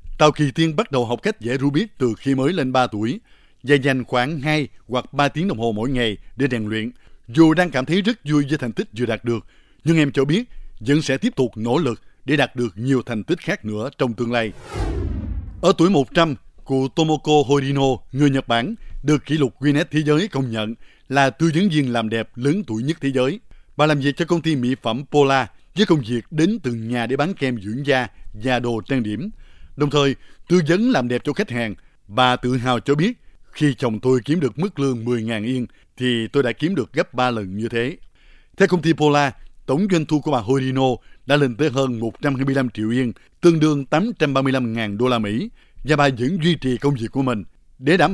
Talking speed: 225 wpm